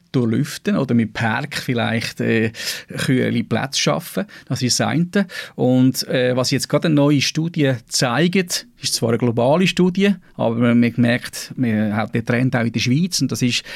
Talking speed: 185 wpm